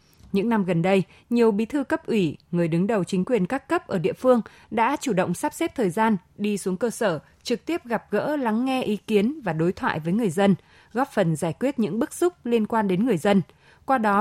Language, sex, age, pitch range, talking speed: Vietnamese, female, 20-39, 185-240 Hz, 245 wpm